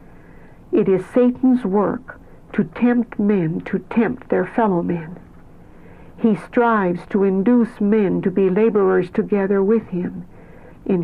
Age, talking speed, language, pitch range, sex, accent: 60-79, 130 wpm, English, 180-220 Hz, female, American